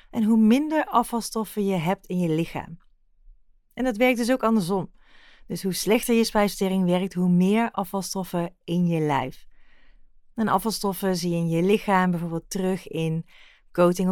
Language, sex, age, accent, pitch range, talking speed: Dutch, female, 30-49, Dutch, 185-235 Hz, 160 wpm